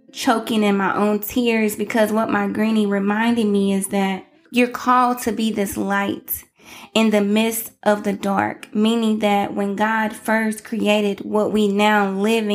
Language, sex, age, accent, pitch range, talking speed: English, female, 20-39, American, 200-230 Hz, 165 wpm